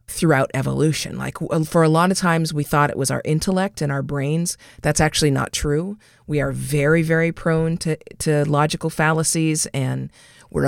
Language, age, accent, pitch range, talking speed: English, 40-59, American, 150-195 Hz, 180 wpm